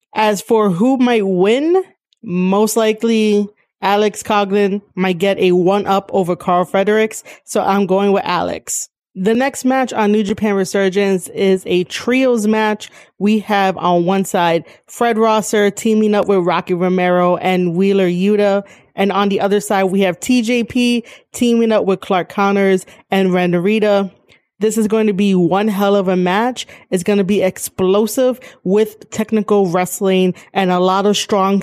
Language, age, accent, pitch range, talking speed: English, 20-39, American, 185-215 Hz, 160 wpm